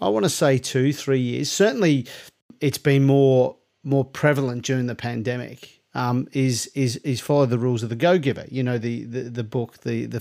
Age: 40-59